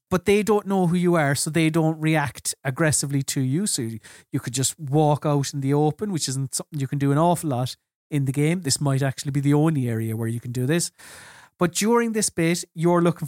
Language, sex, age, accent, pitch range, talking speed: English, male, 30-49, Irish, 145-190 Hz, 245 wpm